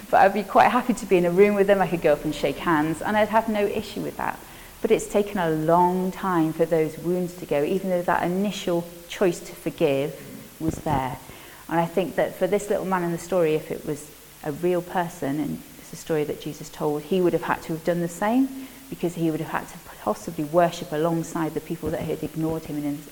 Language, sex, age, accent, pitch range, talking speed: English, female, 30-49, British, 150-190 Hz, 250 wpm